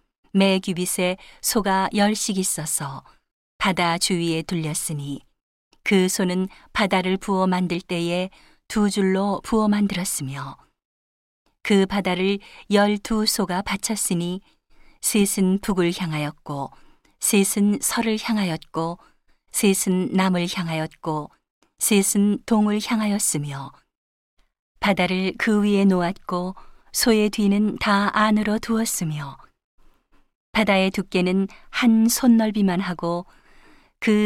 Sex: female